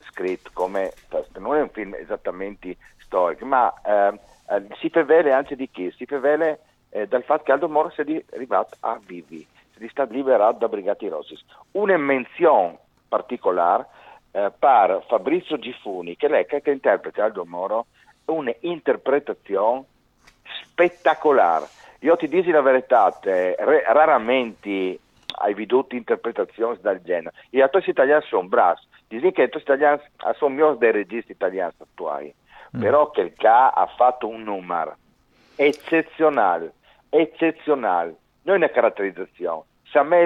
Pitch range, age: 110-155 Hz, 50-69